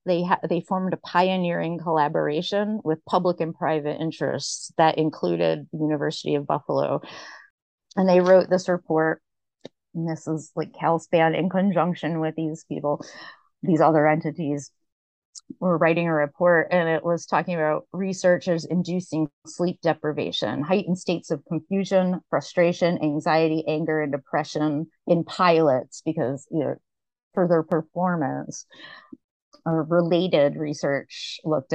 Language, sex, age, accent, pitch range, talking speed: English, female, 30-49, American, 150-180 Hz, 130 wpm